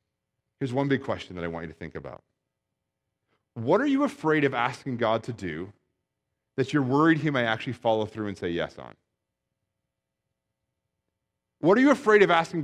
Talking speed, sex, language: 180 wpm, male, English